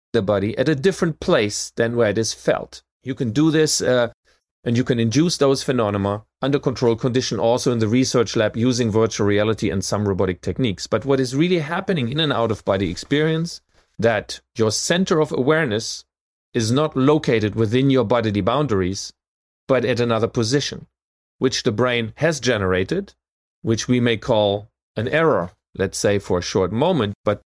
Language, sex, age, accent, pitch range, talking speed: English, male, 30-49, German, 110-145 Hz, 170 wpm